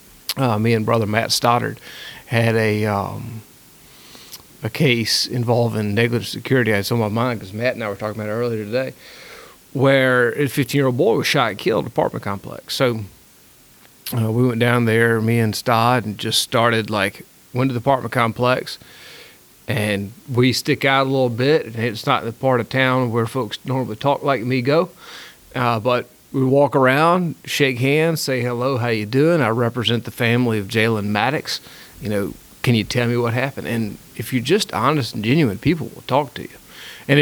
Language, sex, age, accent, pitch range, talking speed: English, male, 40-59, American, 110-130 Hz, 190 wpm